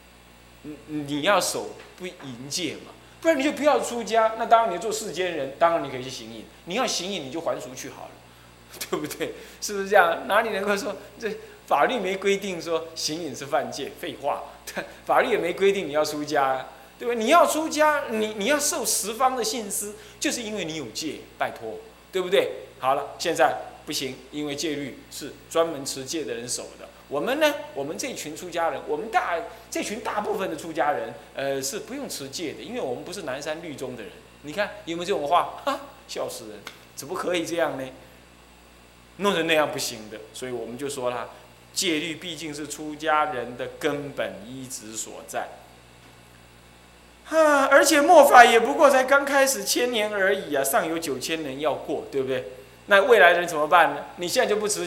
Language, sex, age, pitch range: Chinese, male, 20-39, 130-215 Hz